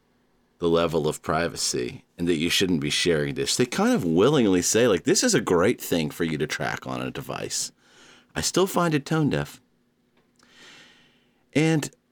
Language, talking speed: English, 180 wpm